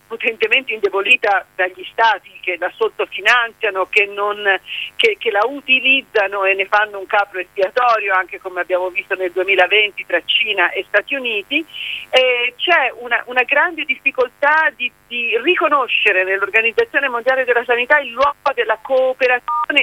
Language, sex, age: Italian, female, 50-69